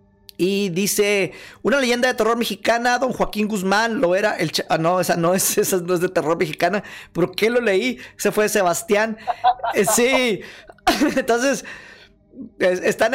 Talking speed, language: 150 wpm, Spanish